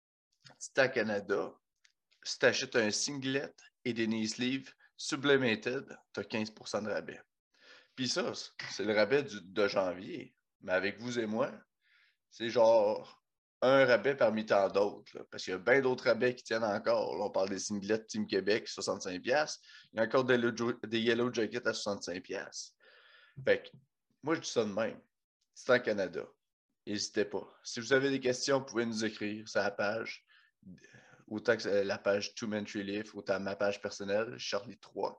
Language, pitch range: French, 105-130 Hz